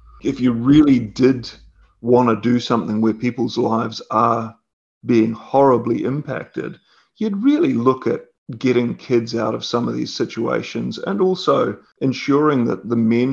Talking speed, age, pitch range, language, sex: 150 wpm, 40-59, 115-140 Hz, English, male